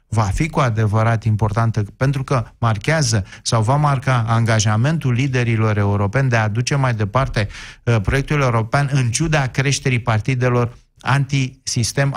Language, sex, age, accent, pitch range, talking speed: Romanian, male, 30-49, native, 115-140 Hz, 130 wpm